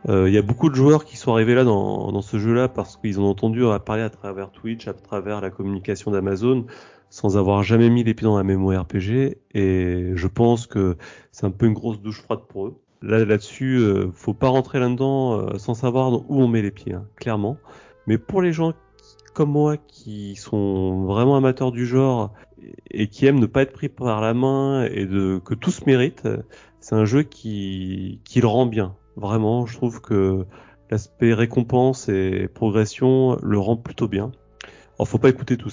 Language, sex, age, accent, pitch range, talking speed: French, male, 30-49, French, 100-120 Hz, 205 wpm